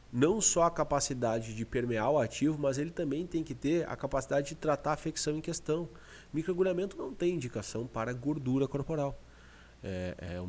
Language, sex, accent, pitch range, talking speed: Portuguese, male, Brazilian, 115-170 Hz, 185 wpm